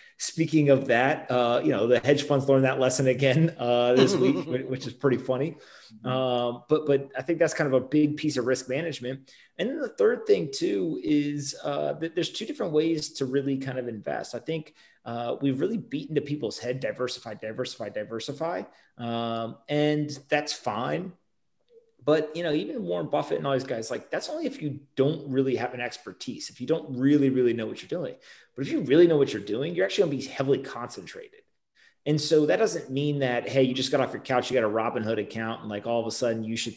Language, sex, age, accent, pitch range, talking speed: English, male, 30-49, American, 120-150 Hz, 225 wpm